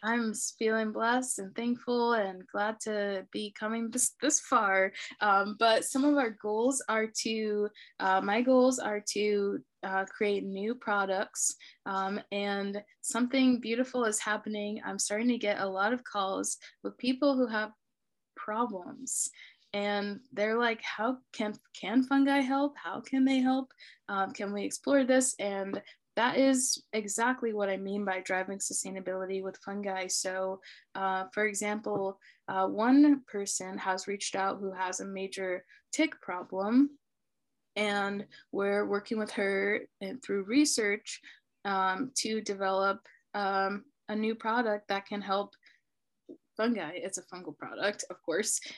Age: 20-39